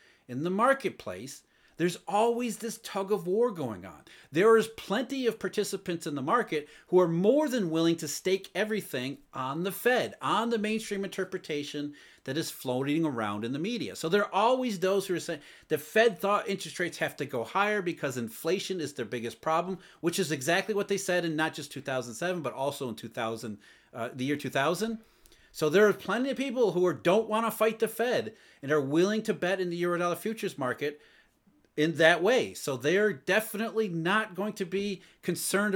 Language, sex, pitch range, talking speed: English, male, 155-215 Hz, 195 wpm